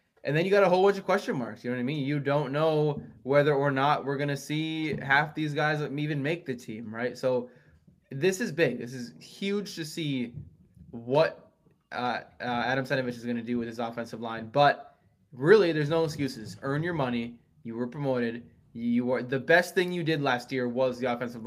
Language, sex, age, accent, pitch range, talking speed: English, male, 20-39, American, 120-160 Hz, 220 wpm